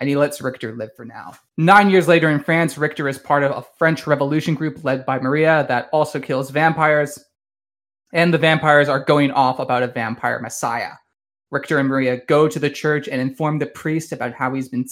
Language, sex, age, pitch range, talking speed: English, male, 20-39, 130-160 Hz, 210 wpm